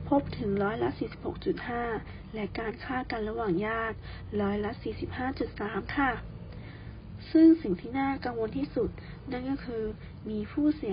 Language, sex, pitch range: Thai, female, 210-280 Hz